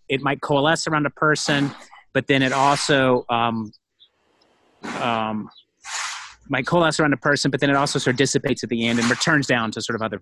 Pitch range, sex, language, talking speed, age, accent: 125-165 Hz, male, English, 200 wpm, 30-49, American